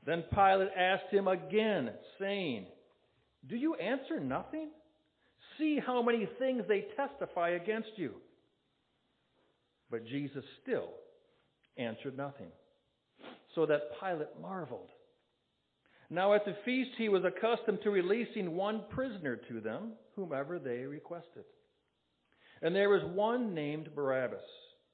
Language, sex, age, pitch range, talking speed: English, male, 60-79, 170-240 Hz, 120 wpm